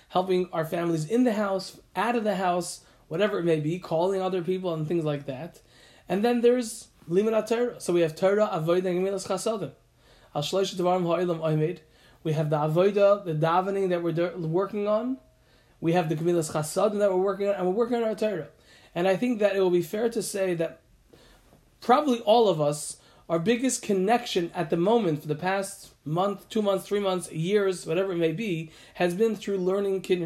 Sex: male